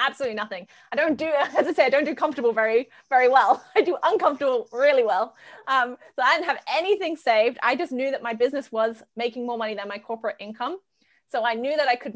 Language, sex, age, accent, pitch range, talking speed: English, female, 20-39, British, 215-255 Hz, 230 wpm